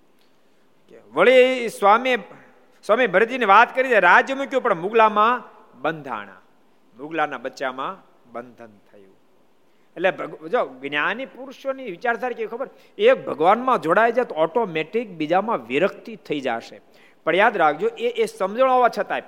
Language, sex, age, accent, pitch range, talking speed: Gujarati, male, 50-69, native, 135-225 Hz, 45 wpm